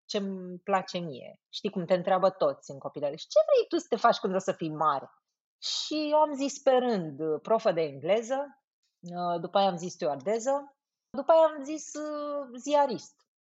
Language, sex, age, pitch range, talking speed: Romanian, female, 30-49, 185-275 Hz, 180 wpm